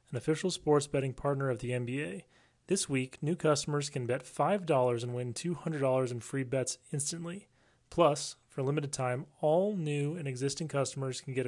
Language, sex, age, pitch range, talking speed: English, male, 30-49, 130-150 Hz, 180 wpm